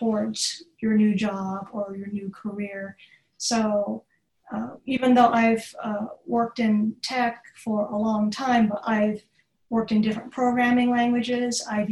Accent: American